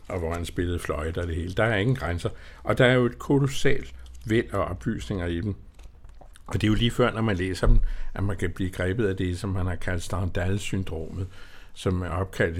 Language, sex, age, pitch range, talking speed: Danish, male, 60-79, 90-115 Hz, 235 wpm